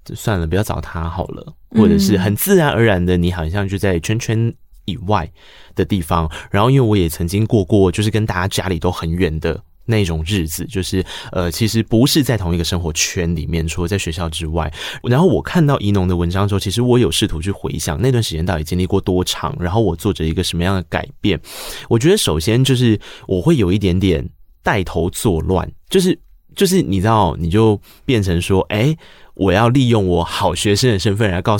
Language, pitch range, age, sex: Chinese, 90-115 Hz, 20-39, male